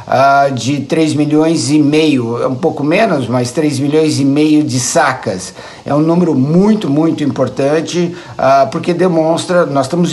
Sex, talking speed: male, 150 wpm